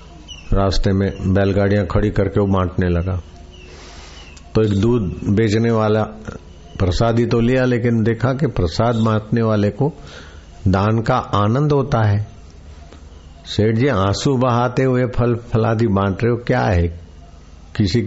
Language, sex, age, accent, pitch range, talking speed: Hindi, male, 50-69, native, 85-115 Hz, 135 wpm